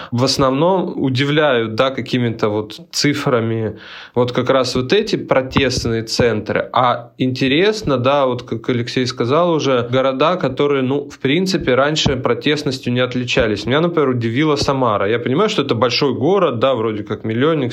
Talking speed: 150 wpm